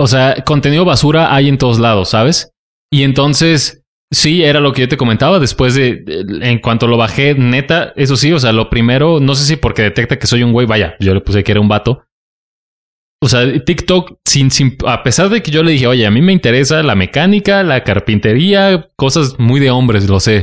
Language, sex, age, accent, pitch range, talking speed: Spanish, male, 20-39, Mexican, 115-155 Hz, 215 wpm